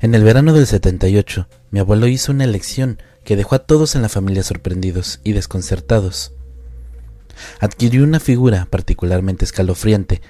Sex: male